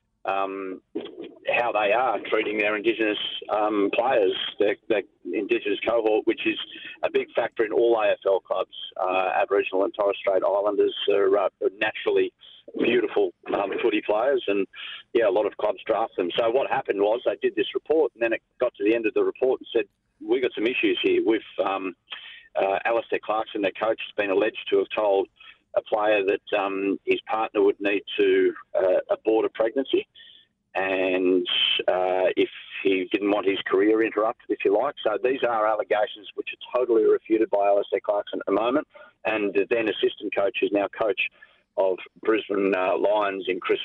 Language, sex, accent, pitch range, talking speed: English, male, Australian, 305-405 Hz, 185 wpm